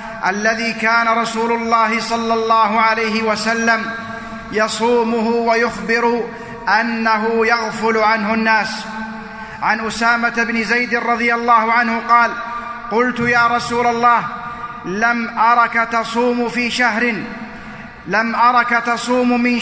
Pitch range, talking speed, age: 220-235 Hz, 105 wpm, 30-49